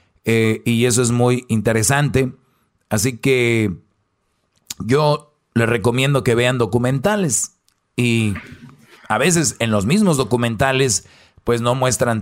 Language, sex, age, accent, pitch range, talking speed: Spanish, male, 40-59, Mexican, 105-130 Hz, 120 wpm